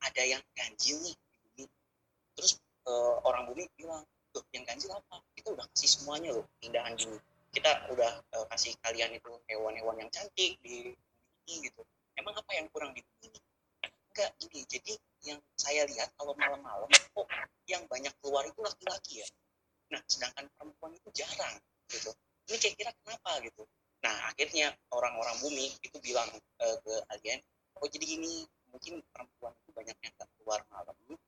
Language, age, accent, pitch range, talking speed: Indonesian, 30-49, native, 115-160 Hz, 155 wpm